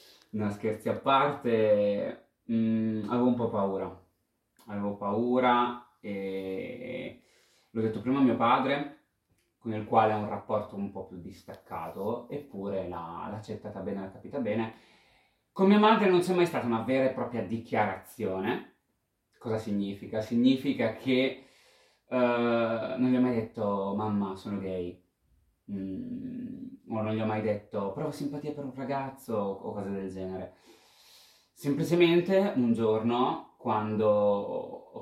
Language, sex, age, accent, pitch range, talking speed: Italian, male, 20-39, native, 100-130 Hz, 135 wpm